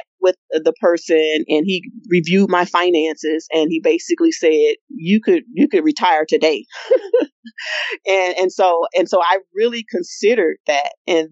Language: English